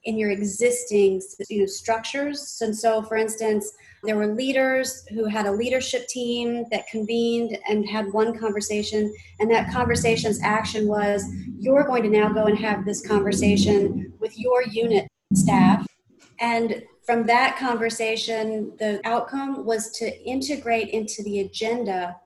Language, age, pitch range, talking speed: English, 30-49, 200-225 Hz, 140 wpm